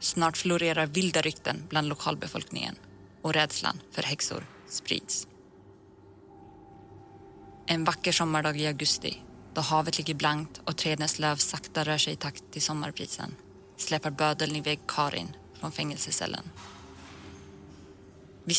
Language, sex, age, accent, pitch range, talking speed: Swedish, female, 20-39, native, 115-165 Hz, 120 wpm